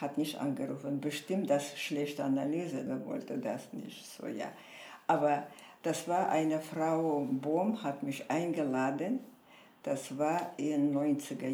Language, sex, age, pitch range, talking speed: German, female, 60-79, 150-210 Hz, 145 wpm